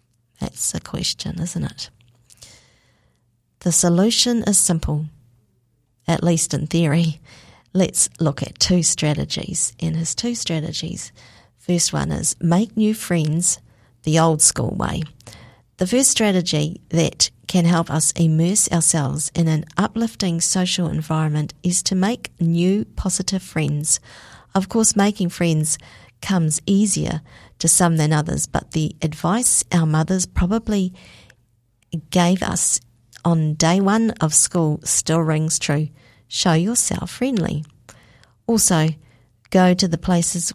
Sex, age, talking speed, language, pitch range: female, 50-69, 125 wpm, English, 145-185 Hz